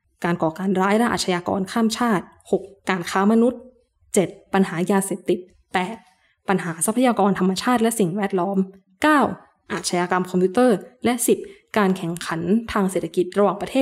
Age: 20-39